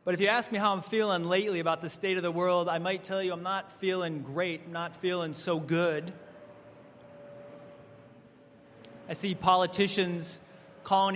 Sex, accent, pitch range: male, American, 145-175 Hz